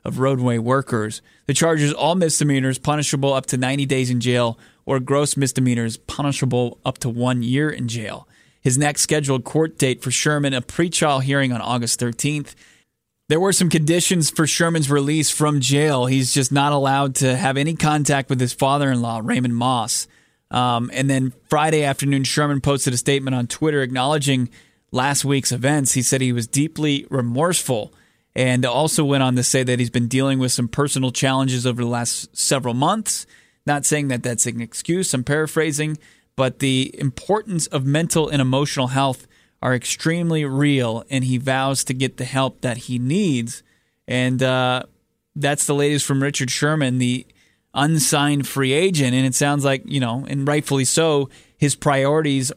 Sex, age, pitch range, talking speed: male, 20-39, 125-145 Hz, 170 wpm